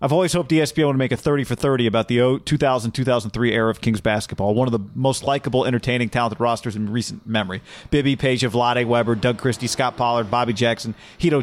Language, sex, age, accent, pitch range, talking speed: English, male, 40-59, American, 120-150 Hz, 195 wpm